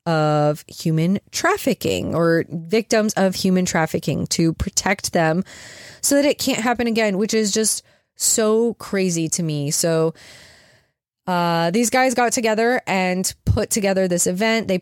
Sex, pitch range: female, 155-190 Hz